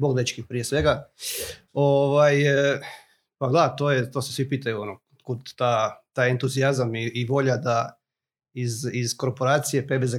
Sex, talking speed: male, 155 wpm